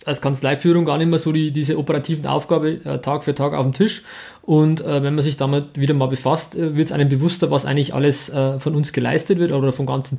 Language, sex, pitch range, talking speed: German, male, 140-170 Hz, 235 wpm